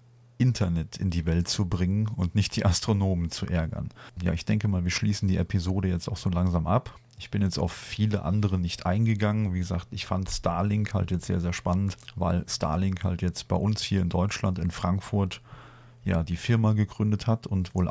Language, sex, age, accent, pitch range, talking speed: German, male, 40-59, German, 90-115 Hz, 205 wpm